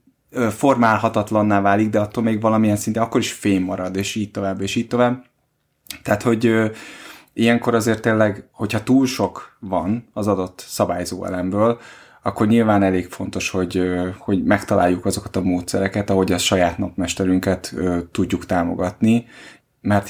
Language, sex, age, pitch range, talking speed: Hungarian, male, 20-39, 95-110 Hz, 140 wpm